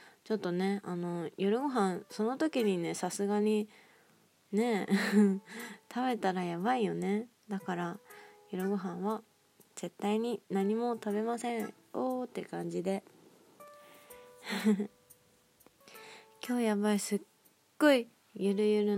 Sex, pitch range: female, 195-245 Hz